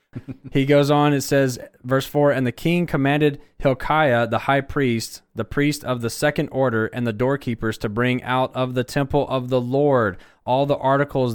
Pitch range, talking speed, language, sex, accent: 115-140 Hz, 190 wpm, English, male, American